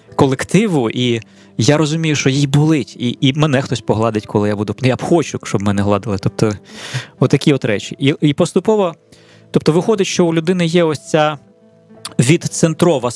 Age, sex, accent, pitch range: 20-39, male, native, 125-165 Hz